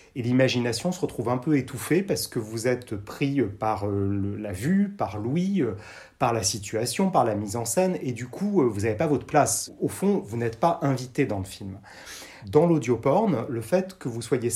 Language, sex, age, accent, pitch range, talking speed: French, male, 30-49, French, 110-150 Hz, 200 wpm